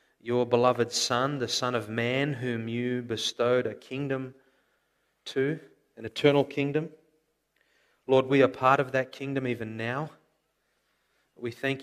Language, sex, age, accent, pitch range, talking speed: English, male, 30-49, Australian, 120-135 Hz, 135 wpm